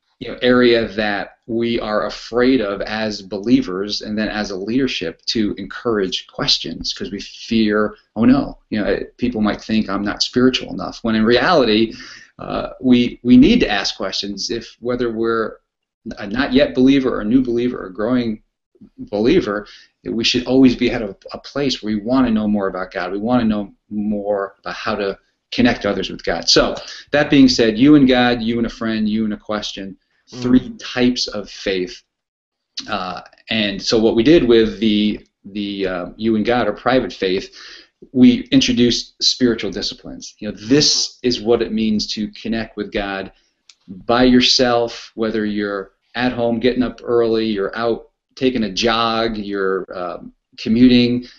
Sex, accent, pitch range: male, American, 105-125 Hz